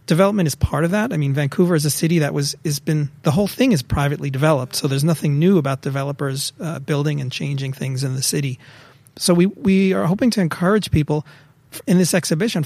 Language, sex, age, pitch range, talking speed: English, male, 40-59, 145-185 Hz, 220 wpm